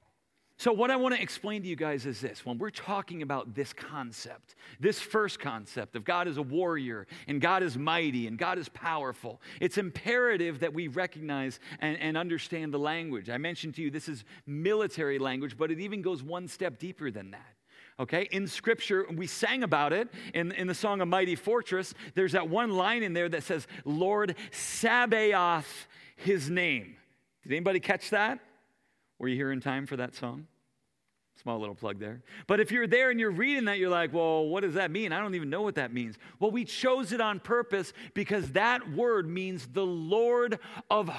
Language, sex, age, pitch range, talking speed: English, male, 40-59, 160-230 Hz, 200 wpm